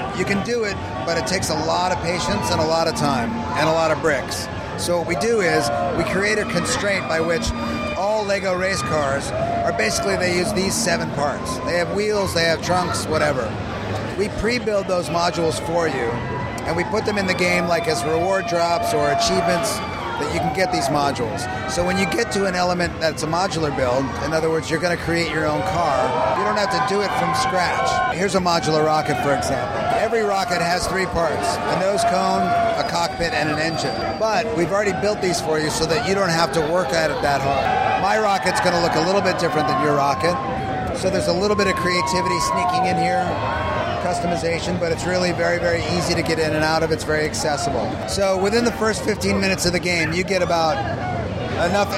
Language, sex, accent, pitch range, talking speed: English, male, American, 155-190 Hz, 220 wpm